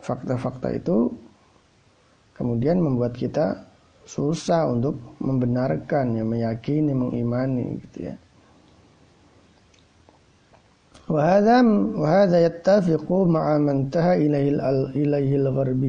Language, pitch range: Indonesian, 125-160 Hz